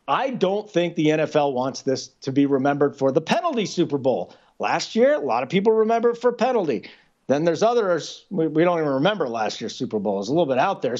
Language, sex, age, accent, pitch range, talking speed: English, male, 40-59, American, 160-225 Hz, 235 wpm